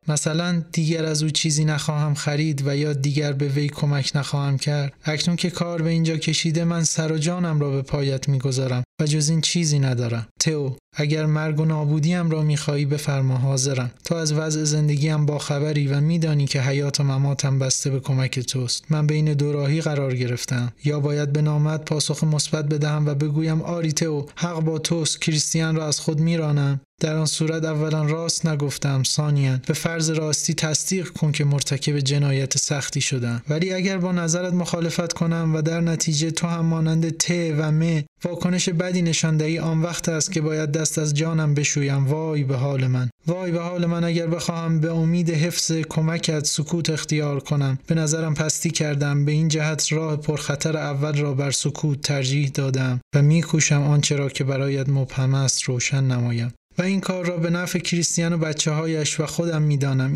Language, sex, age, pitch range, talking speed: Persian, male, 30-49, 140-160 Hz, 185 wpm